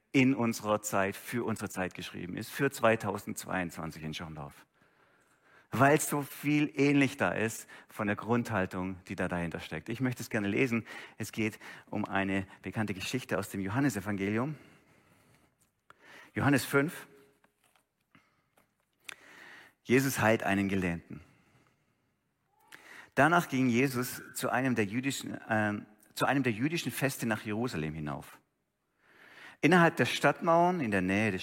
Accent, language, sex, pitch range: German, German, male, 95-125 Hz